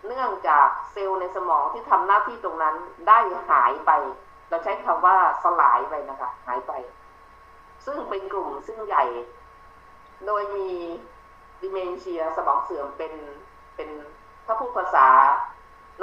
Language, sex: Thai, female